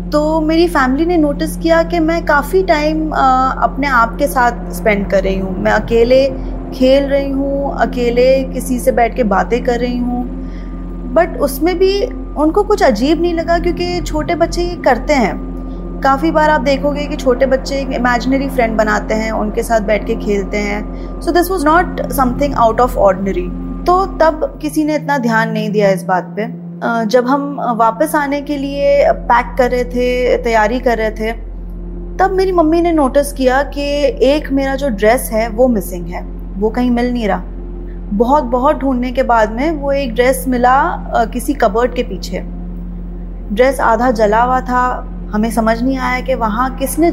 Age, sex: 20-39, female